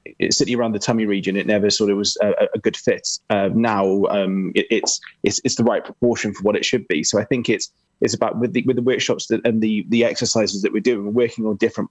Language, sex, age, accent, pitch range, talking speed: English, male, 20-39, British, 105-115 Hz, 265 wpm